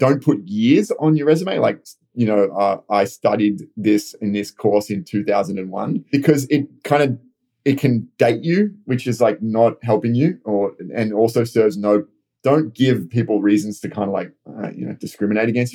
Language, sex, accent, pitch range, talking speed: English, male, Australian, 105-135 Hz, 190 wpm